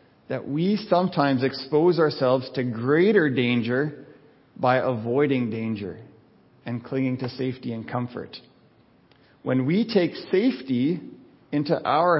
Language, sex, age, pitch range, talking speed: English, male, 50-69, 125-155 Hz, 115 wpm